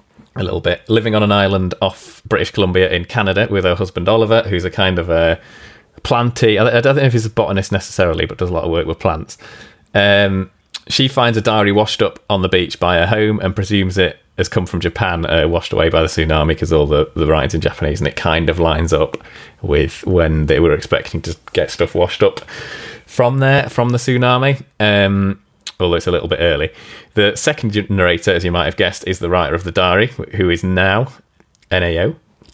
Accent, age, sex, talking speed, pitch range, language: British, 30-49, male, 215 wpm, 85-105 Hz, English